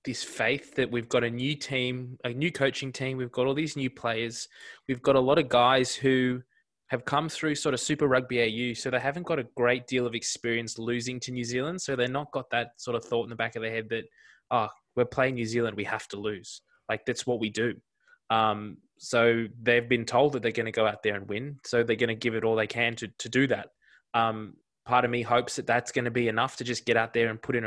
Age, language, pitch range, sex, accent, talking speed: 20-39, English, 115-135 Hz, male, Australian, 265 wpm